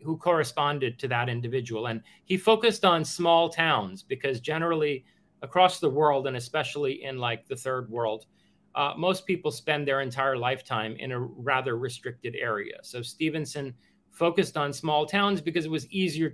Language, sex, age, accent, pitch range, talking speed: English, male, 40-59, American, 120-155 Hz, 165 wpm